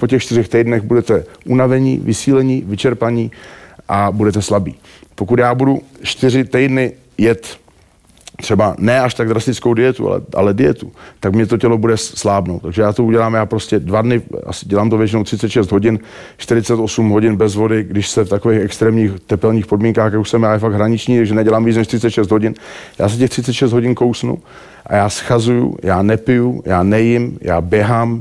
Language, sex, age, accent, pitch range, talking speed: Czech, male, 40-59, native, 110-120 Hz, 180 wpm